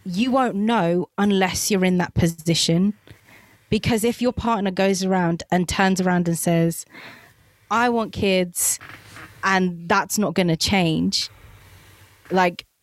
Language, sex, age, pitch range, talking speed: English, female, 20-39, 165-200 Hz, 135 wpm